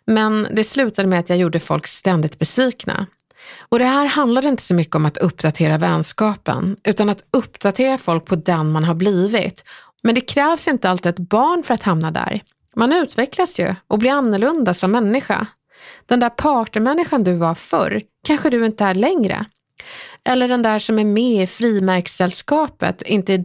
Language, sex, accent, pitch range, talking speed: Swedish, female, native, 185-255 Hz, 180 wpm